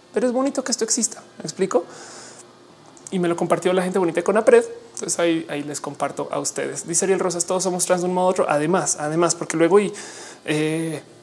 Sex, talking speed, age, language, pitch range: male, 230 wpm, 20-39, Spanish, 150-185 Hz